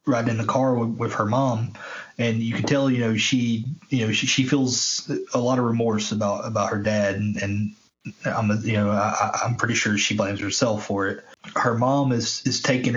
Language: English